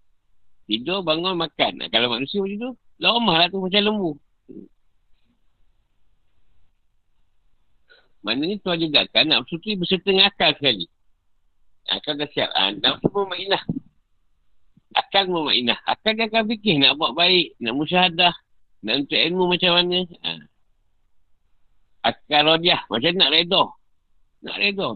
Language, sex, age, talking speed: Malay, male, 50-69, 125 wpm